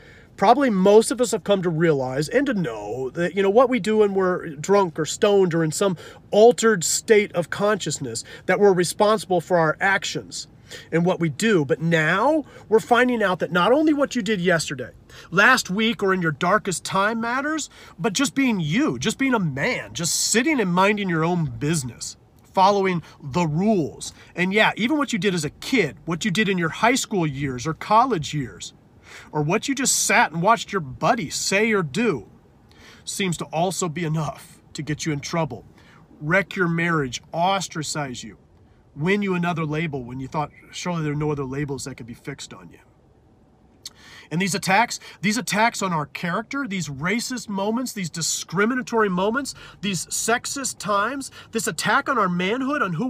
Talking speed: 190 wpm